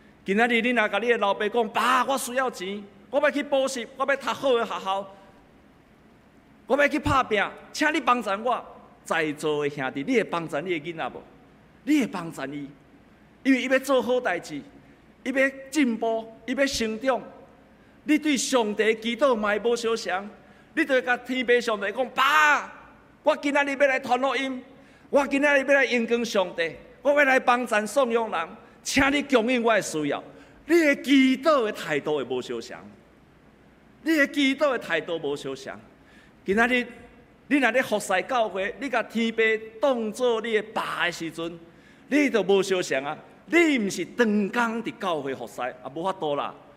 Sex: male